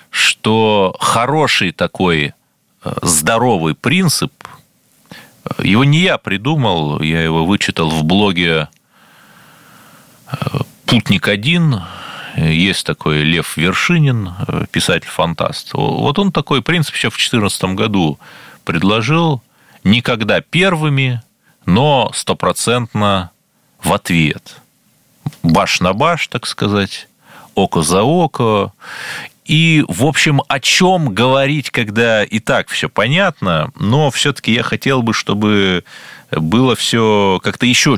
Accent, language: native, Russian